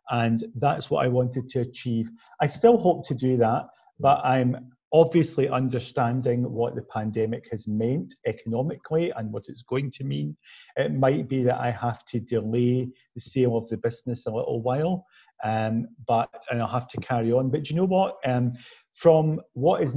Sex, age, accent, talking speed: male, 40-59, British, 185 wpm